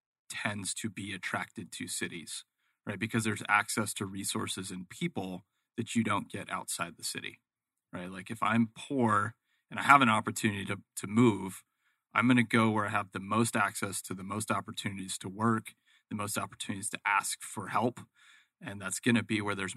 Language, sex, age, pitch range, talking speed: English, male, 30-49, 95-115 Hz, 195 wpm